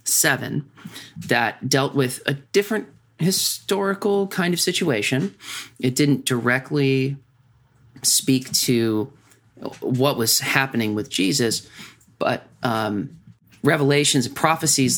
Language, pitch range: English, 110-140 Hz